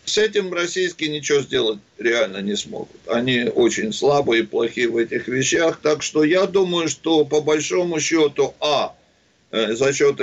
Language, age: Russian, 60-79